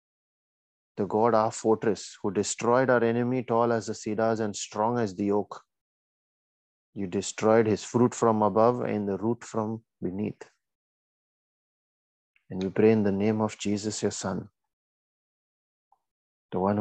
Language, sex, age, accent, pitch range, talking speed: English, male, 30-49, Indian, 105-115 Hz, 145 wpm